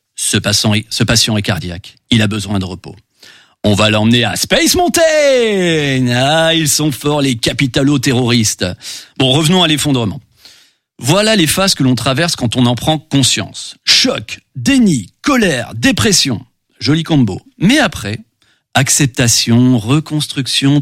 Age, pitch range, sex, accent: 40-59, 125-185 Hz, male, French